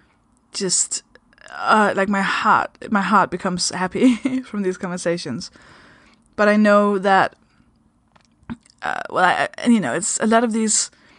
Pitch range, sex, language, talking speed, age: 190-235 Hz, female, English, 145 wpm, 20-39